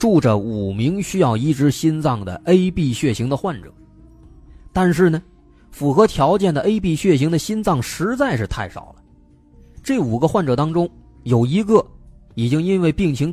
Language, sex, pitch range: Chinese, male, 100-170 Hz